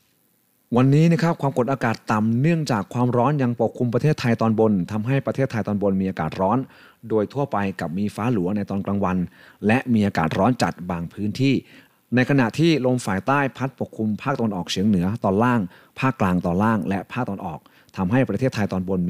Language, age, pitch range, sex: Thai, 30-49, 100-130 Hz, male